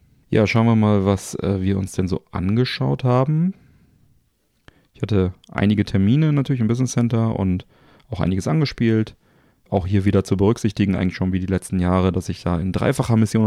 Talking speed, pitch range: 185 wpm, 95-110 Hz